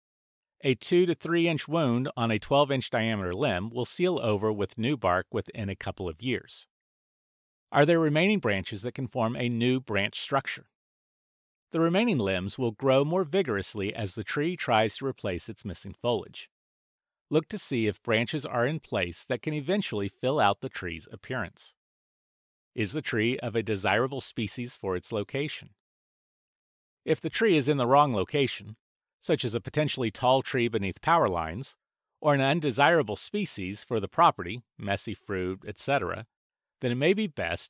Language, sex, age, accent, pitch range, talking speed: English, male, 40-59, American, 105-150 Hz, 170 wpm